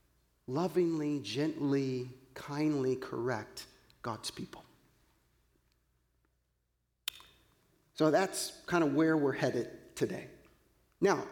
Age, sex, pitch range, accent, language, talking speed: 40-59, male, 145-195 Hz, American, English, 80 wpm